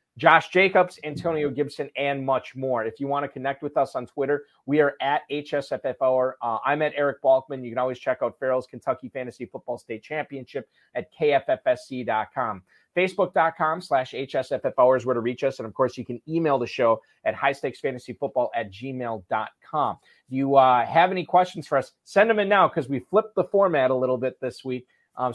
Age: 30-49